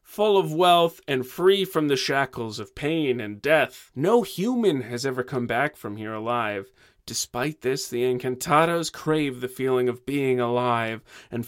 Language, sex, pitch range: English, male, 115-155 Hz